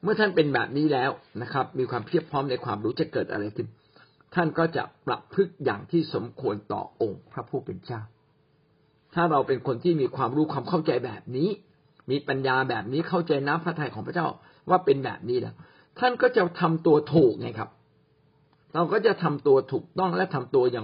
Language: Thai